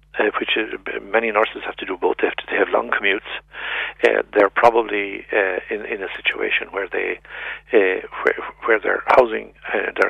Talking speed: 200 wpm